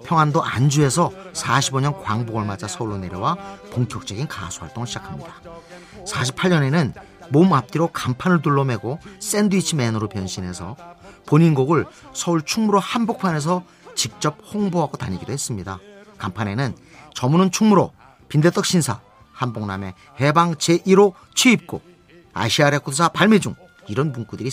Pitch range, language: 115-175 Hz, Korean